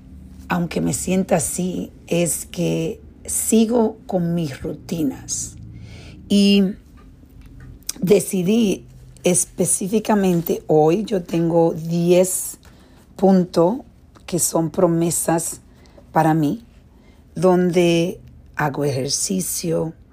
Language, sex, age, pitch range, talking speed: Spanish, female, 50-69, 135-170 Hz, 80 wpm